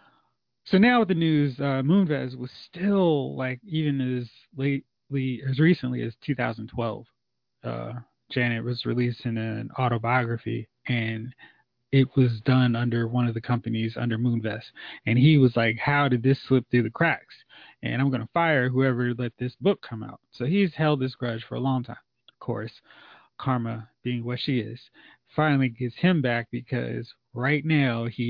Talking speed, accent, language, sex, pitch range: 170 wpm, American, English, male, 115-135 Hz